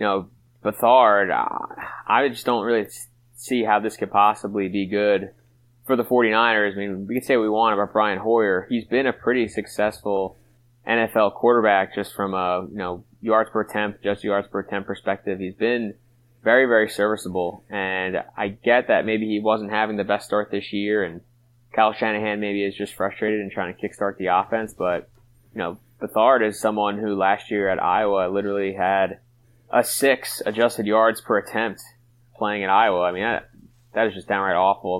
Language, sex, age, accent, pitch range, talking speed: English, male, 20-39, American, 95-115 Hz, 190 wpm